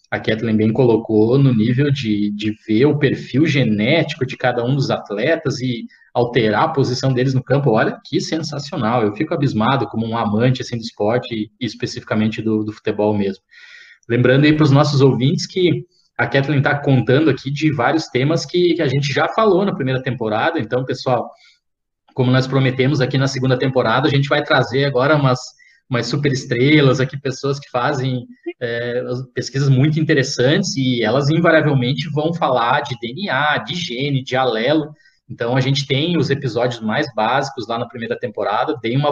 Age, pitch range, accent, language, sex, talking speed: 20-39, 125-150 Hz, Brazilian, Portuguese, male, 175 wpm